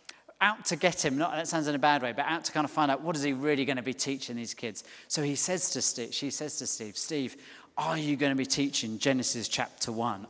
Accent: British